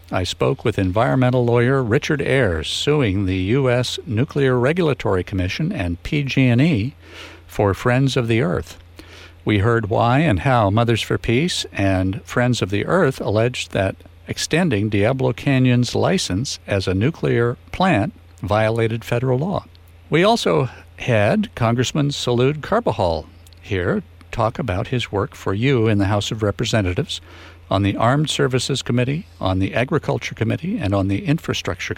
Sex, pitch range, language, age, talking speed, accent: male, 95-130 Hz, English, 60-79, 145 wpm, American